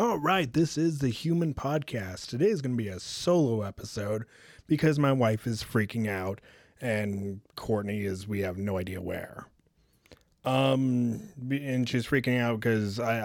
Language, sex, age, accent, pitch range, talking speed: English, male, 30-49, American, 105-135 Hz, 160 wpm